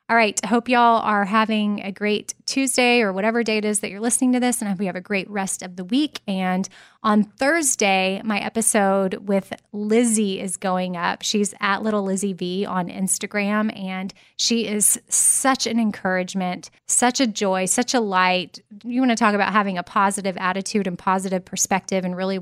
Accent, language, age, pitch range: American, English, 20-39, 190-225 Hz